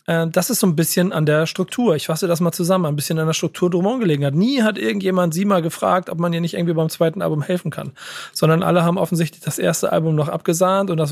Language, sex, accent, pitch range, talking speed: German, male, German, 155-180 Hz, 260 wpm